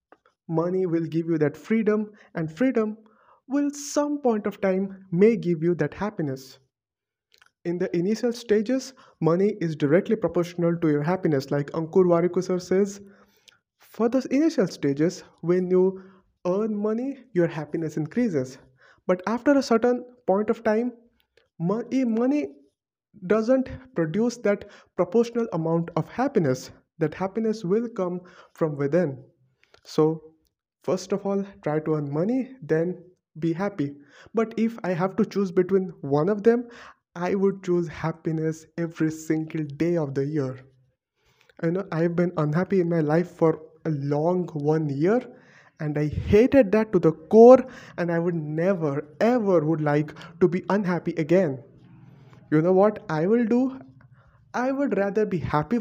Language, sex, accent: English, male, Indian